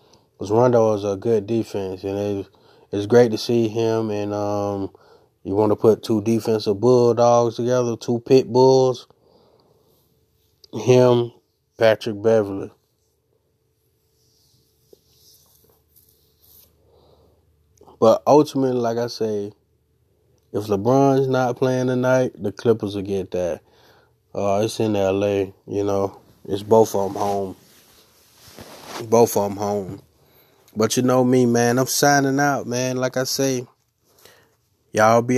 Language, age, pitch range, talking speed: English, 20-39, 105-135 Hz, 120 wpm